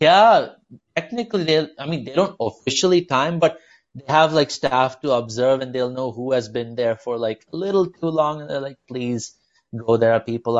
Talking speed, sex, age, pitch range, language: 210 wpm, male, 30-49, 110-135 Hz, English